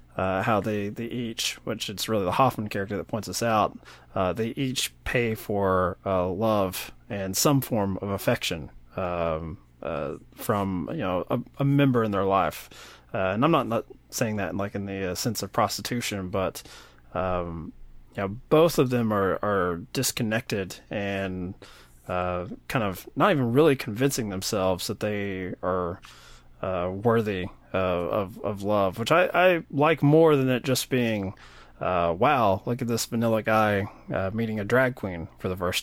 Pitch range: 95-120 Hz